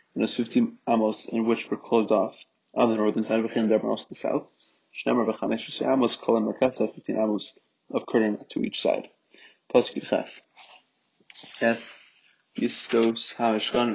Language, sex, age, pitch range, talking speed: English, male, 20-39, 110-120 Hz, 150 wpm